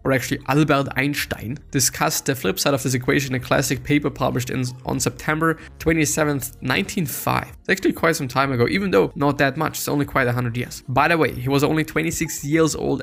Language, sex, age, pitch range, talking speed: English, male, 20-39, 125-150 Hz, 210 wpm